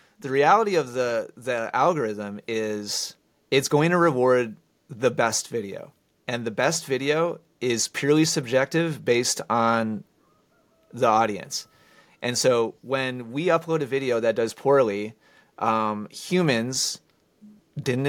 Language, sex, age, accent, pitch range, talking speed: English, male, 30-49, American, 115-145 Hz, 125 wpm